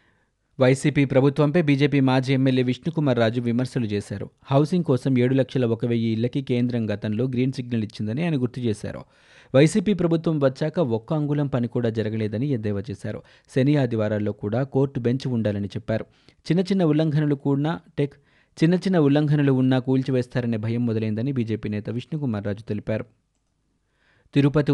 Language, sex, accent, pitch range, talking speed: Telugu, male, native, 115-145 Hz, 140 wpm